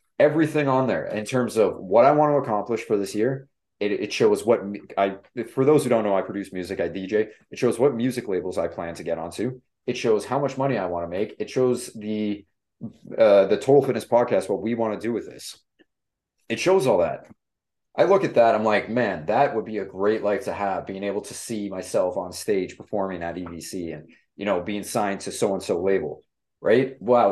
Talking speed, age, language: 225 wpm, 30-49, English